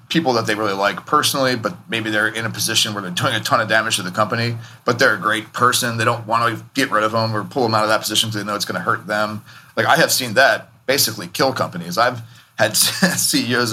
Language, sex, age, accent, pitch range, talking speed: English, male, 30-49, American, 105-130 Hz, 265 wpm